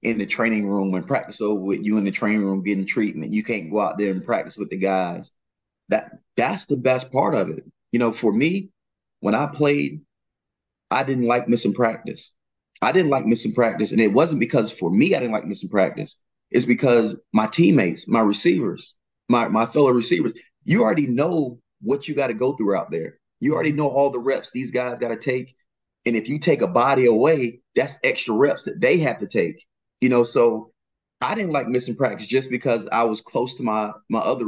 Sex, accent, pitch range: male, American, 110-130 Hz